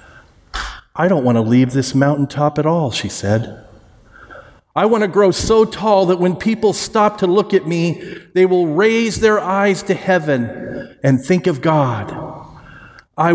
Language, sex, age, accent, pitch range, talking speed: English, male, 40-59, American, 125-175 Hz, 165 wpm